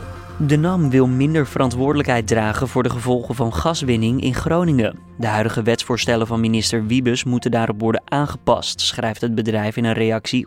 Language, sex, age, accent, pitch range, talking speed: Dutch, male, 20-39, Dutch, 115-135 Hz, 165 wpm